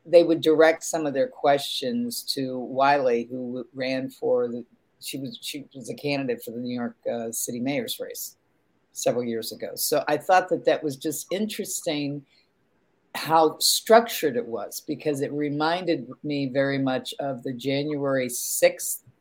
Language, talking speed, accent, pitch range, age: English, 160 wpm, American, 130-170 Hz, 50-69